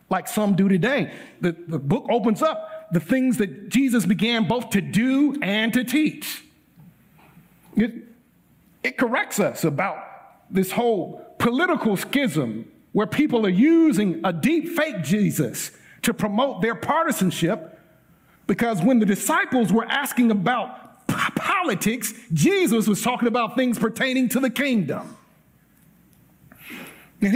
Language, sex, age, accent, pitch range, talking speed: English, male, 50-69, American, 185-245 Hz, 130 wpm